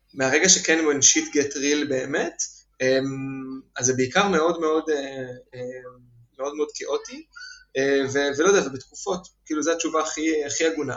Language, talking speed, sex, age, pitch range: Hebrew, 140 wpm, male, 20-39, 135-165 Hz